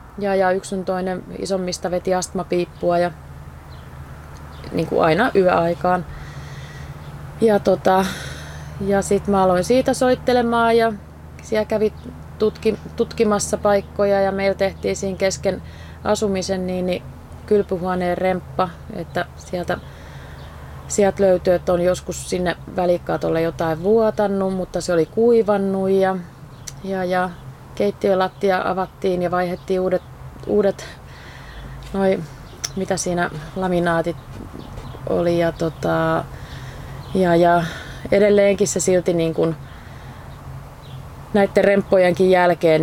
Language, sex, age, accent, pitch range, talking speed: Finnish, female, 30-49, native, 160-190 Hz, 110 wpm